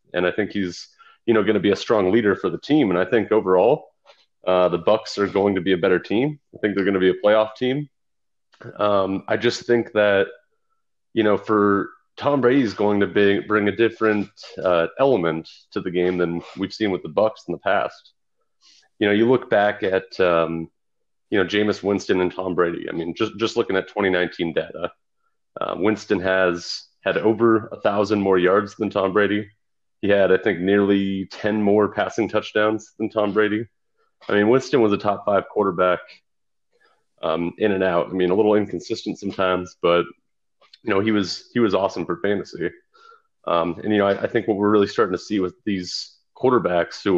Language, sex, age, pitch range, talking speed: English, male, 30-49, 95-110 Hz, 205 wpm